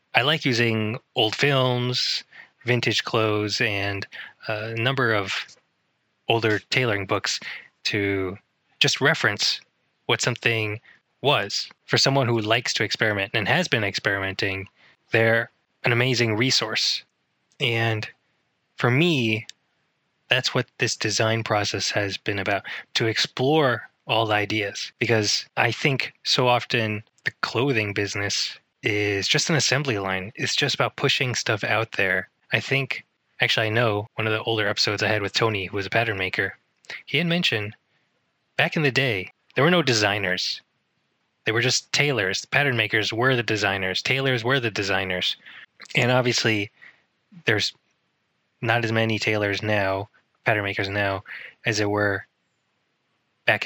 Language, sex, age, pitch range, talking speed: English, male, 20-39, 105-125 Hz, 145 wpm